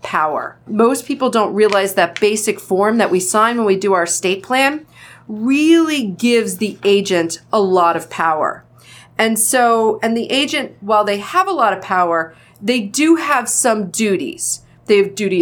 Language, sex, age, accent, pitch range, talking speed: English, female, 40-59, American, 195-255 Hz, 175 wpm